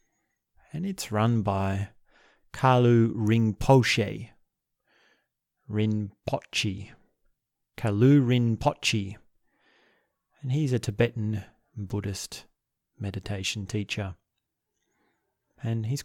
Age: 30-49